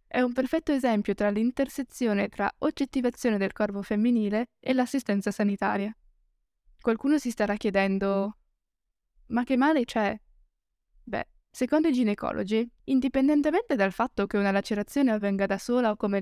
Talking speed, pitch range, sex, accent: 135 wpm, 205-255 Hz, female, native